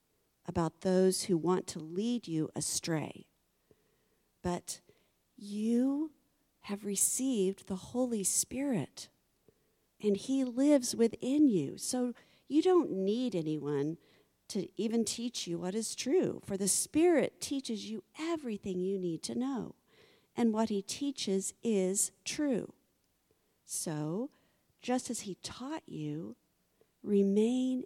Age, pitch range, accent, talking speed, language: 50-69, 170-230 Hz, American, 120 wpm, English